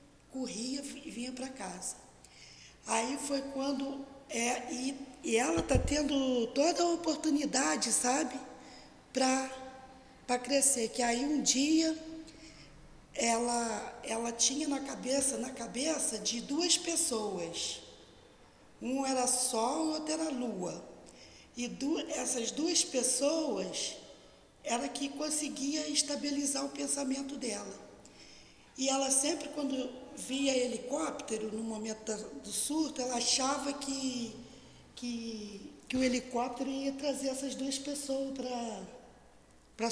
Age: 20-39